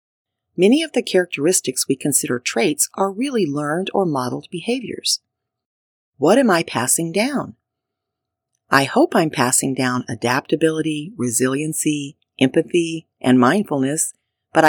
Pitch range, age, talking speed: 135-190 Hz, 40-59, 120 wpm